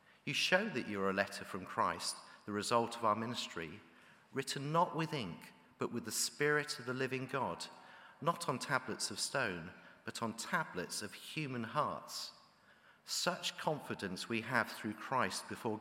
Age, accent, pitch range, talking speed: 50-69, British, 110-150 Hz, 165 wpm